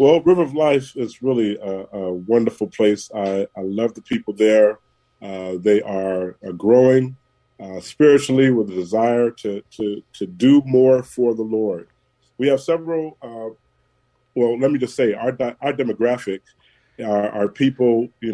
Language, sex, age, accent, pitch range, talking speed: English, male, 40-59, American, 105-125 Hz, 165 wpm